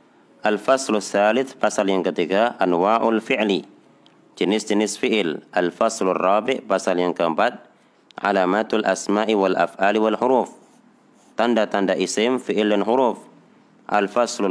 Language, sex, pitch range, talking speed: Indonesian, male, 90-110 Hz, 110 wpm